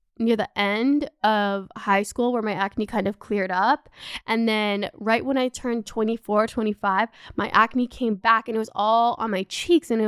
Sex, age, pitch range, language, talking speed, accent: female, 10-29, 215-265 Hz, English, 200 wpm, American